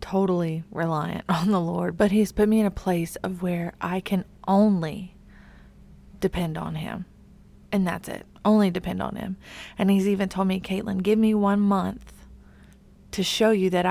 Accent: American